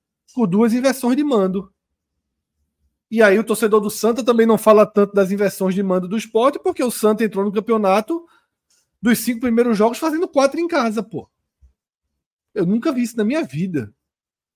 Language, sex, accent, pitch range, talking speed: Portuguese, male, Brazilian, 150-240 Hz, 175 wpm